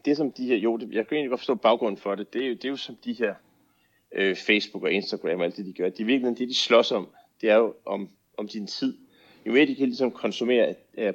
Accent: native